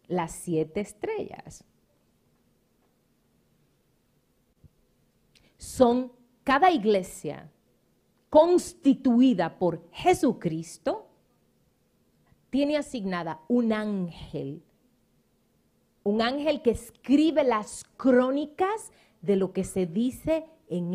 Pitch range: 180-270 Hz